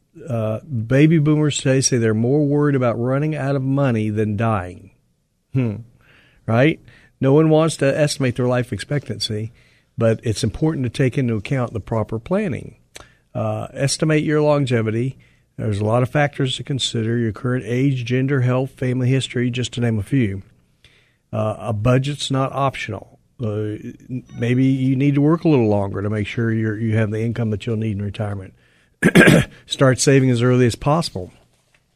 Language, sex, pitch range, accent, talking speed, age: English, male, 115-140 Hz, American, 170 wpm, 50-69